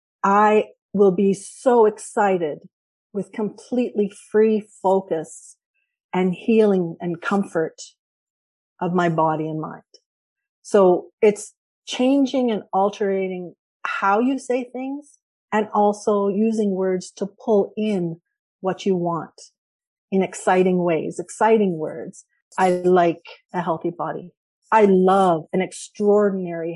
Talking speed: 115 wpm